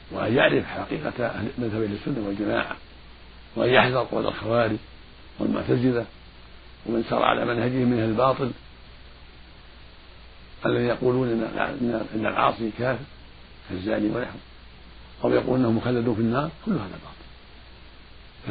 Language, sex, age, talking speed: Arabic, male, 60-79, 110 wpm